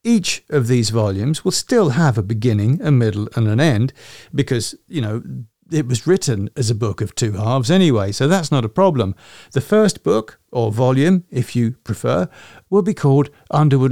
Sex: male